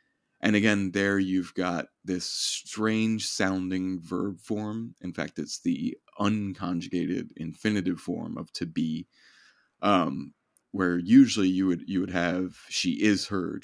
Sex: male